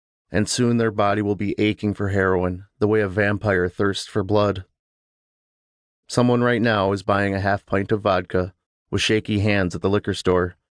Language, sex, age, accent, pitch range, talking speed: English, male, 30-49, American, 95-110 Hz, 185 wpm